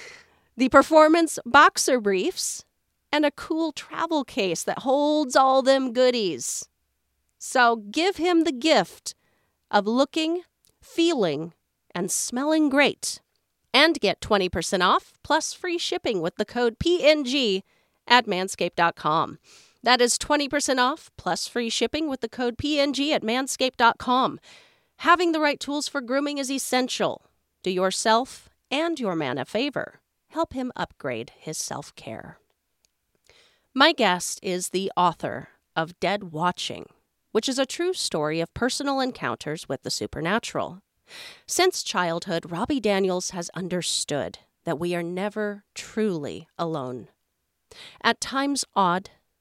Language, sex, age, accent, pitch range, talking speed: English, female, 40-59, American, 190-295 Hz, 130 wpm